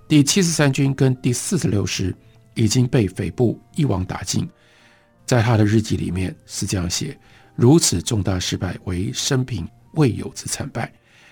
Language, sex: Chinese, male